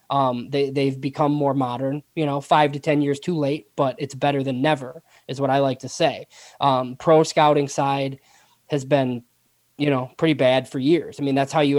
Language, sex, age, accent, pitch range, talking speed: English, male, 20-39, American, 135-155 Hz, 215 wpm